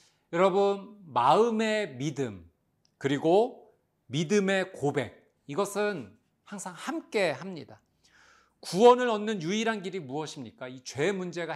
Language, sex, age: Korean, male, 40-59